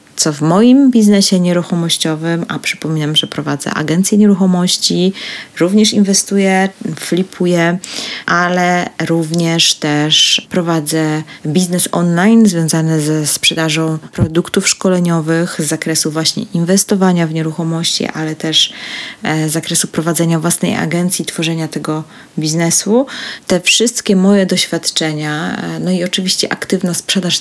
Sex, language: female, Polish